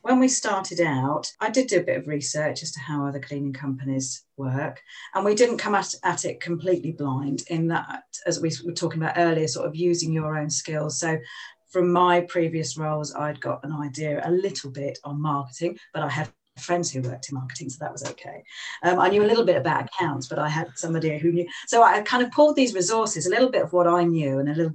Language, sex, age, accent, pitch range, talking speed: English, female, 40-59, British, 140-180 Hz, 240 wpm